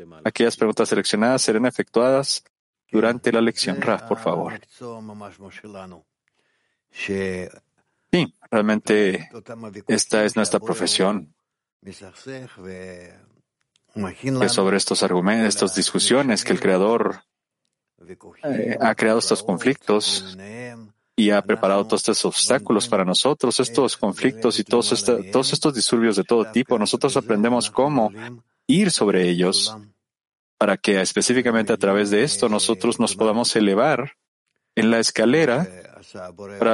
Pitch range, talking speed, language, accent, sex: 100-120 Hz, 115 wpm, Spanish, Mexican, male